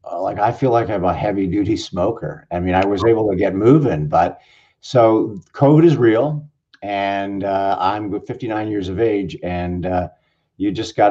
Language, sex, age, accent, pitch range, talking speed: English, male, 50-69, American, 90-115 Hz, 180 wpm